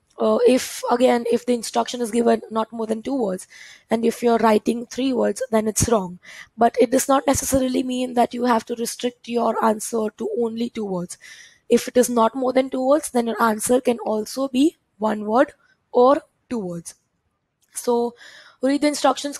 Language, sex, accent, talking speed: English, female, Indian, 190 wpm